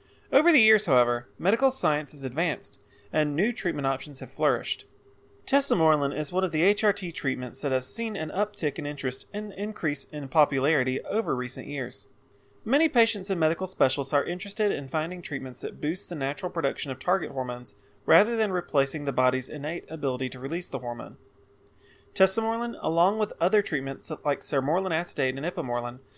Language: English